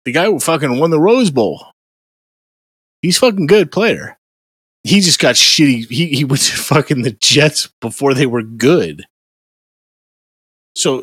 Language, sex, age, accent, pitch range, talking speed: English, male, 30-49, American, 100-140 Hz, 150 wpm